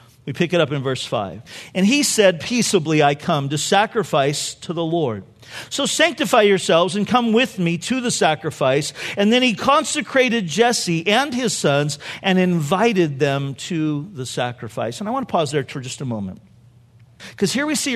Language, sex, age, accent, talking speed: English, male, 50-69, American, 185 wpm